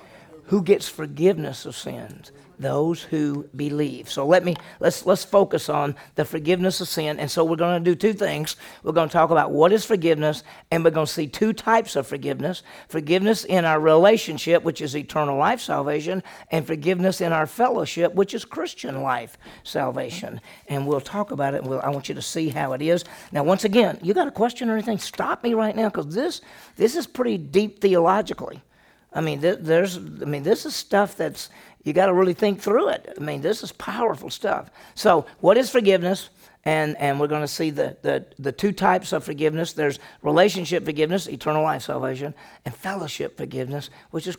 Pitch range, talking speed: 150-200 Hz, 205 wpm